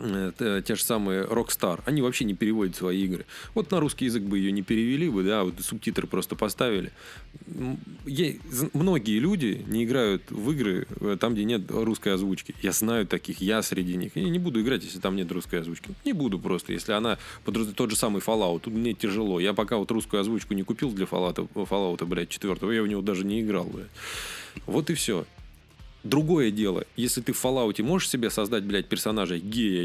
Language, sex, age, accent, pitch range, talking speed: Russian, male, 20-39, native, 95-125 Hz, 195 wpm